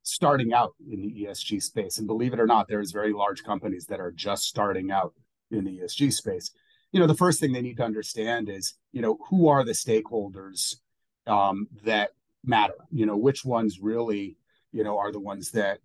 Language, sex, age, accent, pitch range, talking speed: English, male, 30-49, American, 105-130 Hz, 210 wpm